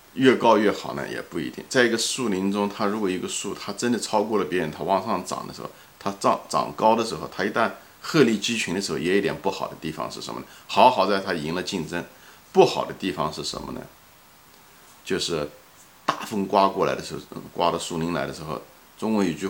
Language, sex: Chinese, male